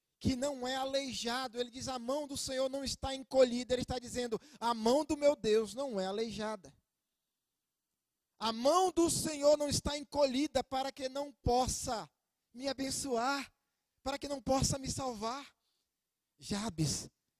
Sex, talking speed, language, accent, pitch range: male, 150 wpm, Portuguese, Brazilian, 195-250 Hz